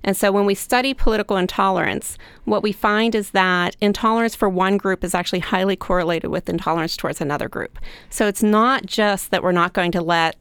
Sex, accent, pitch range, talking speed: female, American, 180-215 Hz, 200 wpm